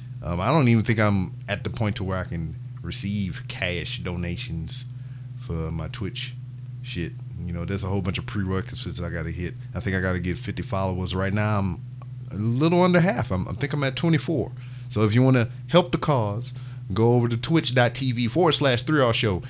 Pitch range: 105-125 Hz